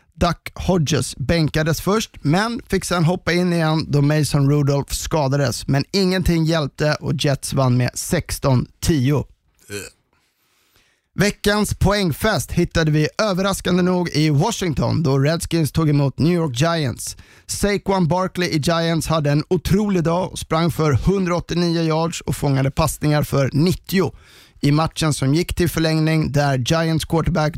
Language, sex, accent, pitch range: Swedish, male, native, 140-175 Hz